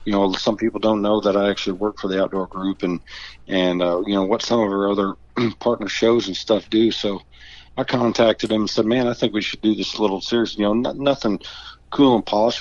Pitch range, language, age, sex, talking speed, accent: 100-115 Hz, English, 40-59, male, 245 wpm, American